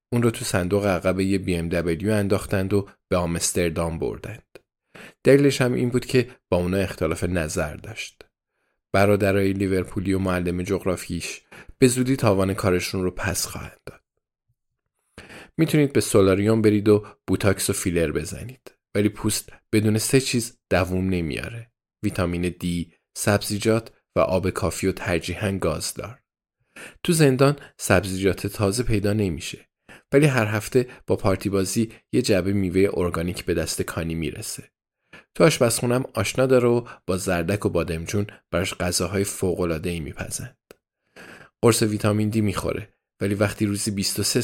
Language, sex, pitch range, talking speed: Persian, male, 90-110 Hz, 145 wpm